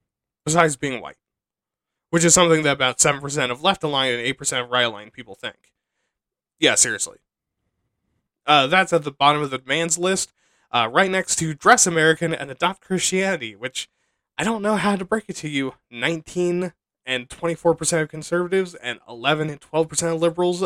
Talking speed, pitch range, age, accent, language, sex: 170 wpm, 145-190 Hz, 20-39, American, English, male